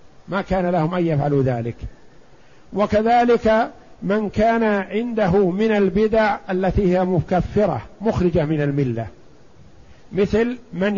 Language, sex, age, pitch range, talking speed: Arabic, male, 50-69, 170-215 Hz, 110 wpm